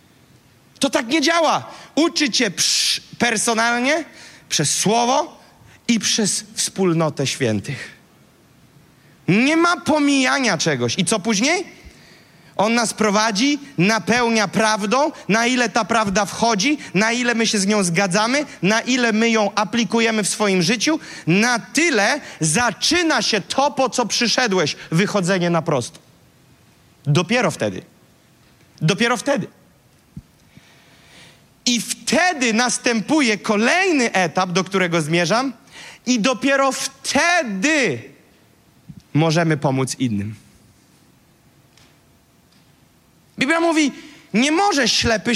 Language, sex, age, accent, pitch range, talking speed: Polish, male, 30-49, native, 185-260 Hz, 105 wpm